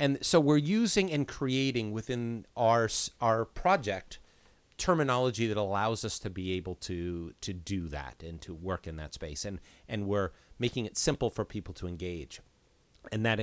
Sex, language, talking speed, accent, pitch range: male, English, 175 wpm, American, 95-125 Hz